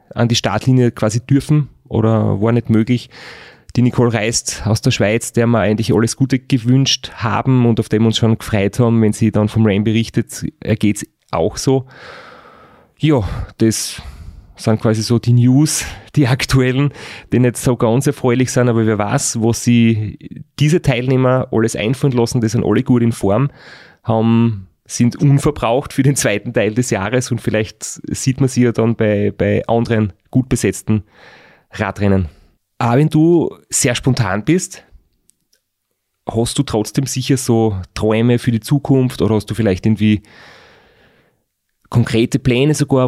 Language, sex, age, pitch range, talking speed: German, male, 30-49, 110-130 Hz, 160 wpm